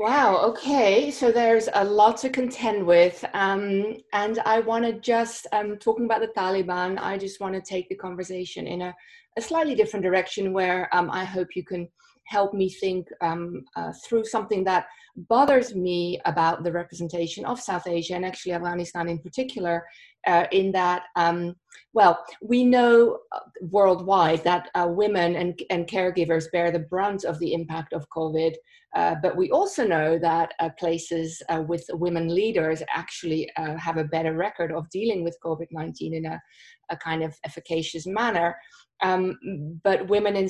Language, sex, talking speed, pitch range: English, female, 170 wpm, 170-210 Hz